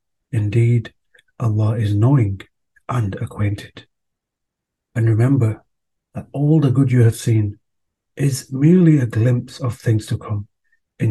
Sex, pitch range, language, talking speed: male, 110-130 Hz, English, 130 wpm